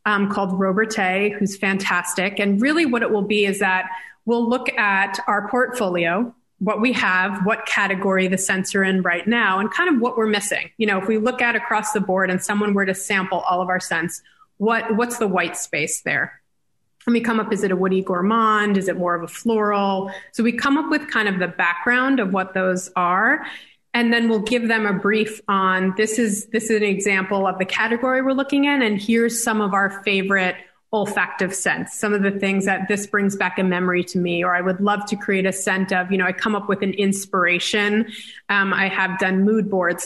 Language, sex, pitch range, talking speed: English, female, 190-220 Hz, 225 wpm